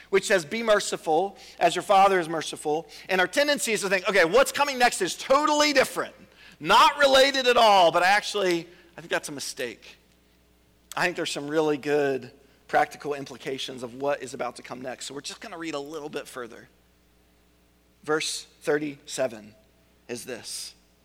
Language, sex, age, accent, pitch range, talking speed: English, male, 40-59, American, 125-200 Hz, 175 wpm